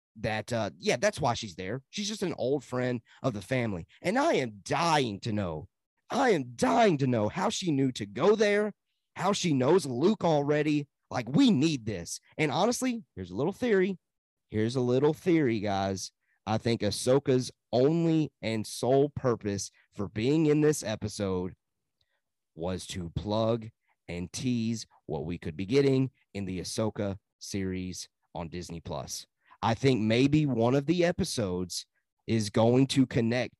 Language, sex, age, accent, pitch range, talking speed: English, male, 30-49, American, 105-145 Hz, 165 wpm